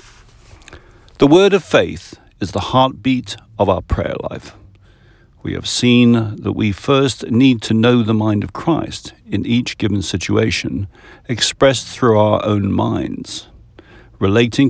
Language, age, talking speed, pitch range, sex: English, 50-69, 140 wpm, 100-125 Hz, male